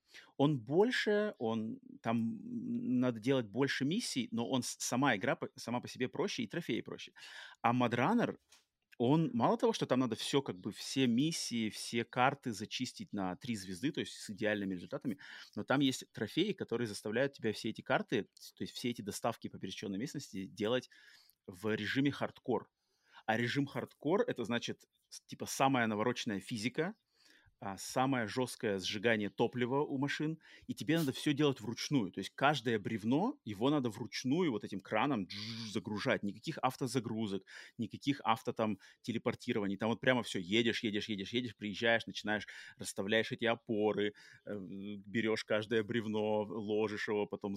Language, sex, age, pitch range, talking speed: Russian, male, 30-49, 105-135 Hz, 155 wpm